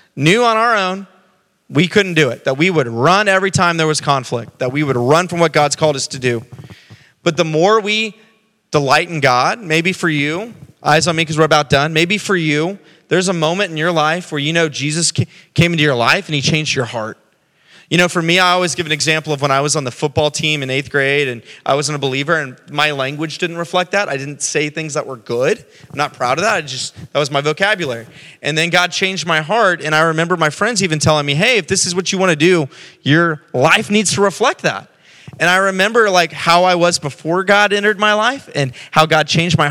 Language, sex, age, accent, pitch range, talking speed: English, male, 30-49, American, 140-180 Hz, 245 wpm